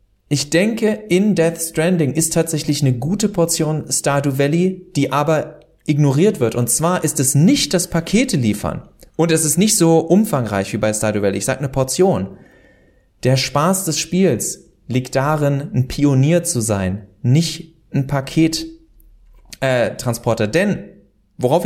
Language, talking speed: German, 150 wpm